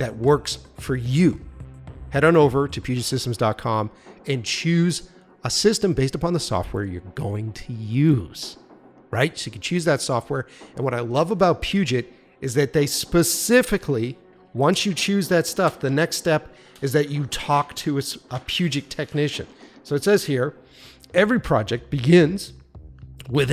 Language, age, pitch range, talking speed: English, 40-59, 115-170 Hz, 160 wpm